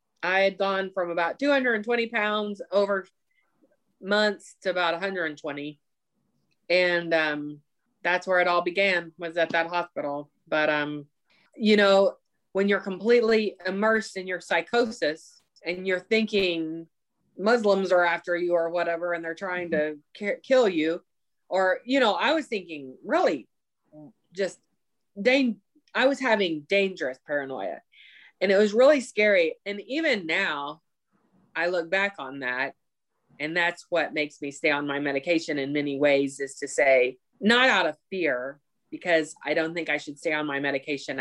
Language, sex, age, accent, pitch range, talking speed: English, female, 20-39, American, 145-200 Hz, 150 wpm